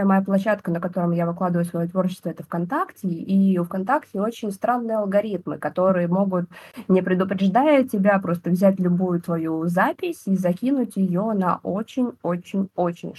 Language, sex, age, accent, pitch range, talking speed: Russian, female, 20-39, native, 170-200 Hz, 140 wpm